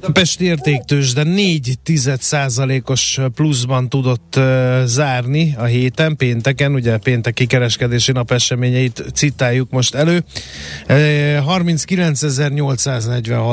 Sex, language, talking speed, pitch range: male, Hungarian, 90 wpm, 125-150 Hz